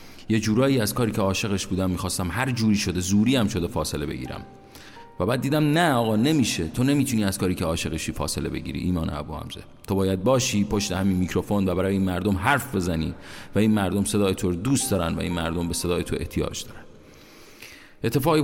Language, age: Persian, 40-59